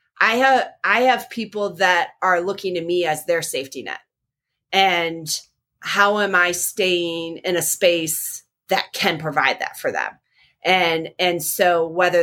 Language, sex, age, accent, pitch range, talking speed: English, female, 30-49, American, 165-195 Hz, 155 wpm